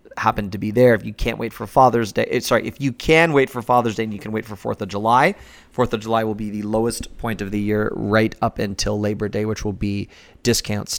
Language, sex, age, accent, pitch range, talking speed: English, male, 30-49, American, 105-125 Hz, 255 wpm